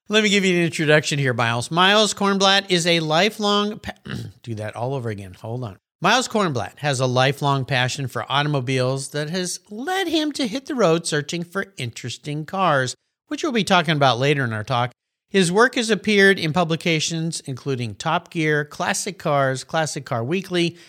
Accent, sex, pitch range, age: American, male, 125-195 Hz, 50-69